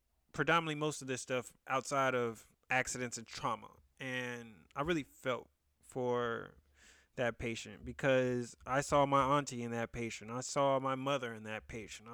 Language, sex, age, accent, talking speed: English, male, 20-39, American, 160 wpm